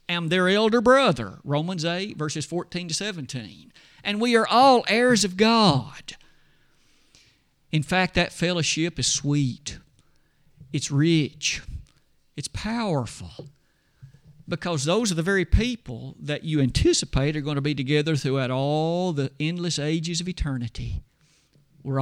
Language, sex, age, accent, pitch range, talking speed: English, male, 50-69, American, 145-205 Hz, 135 wpm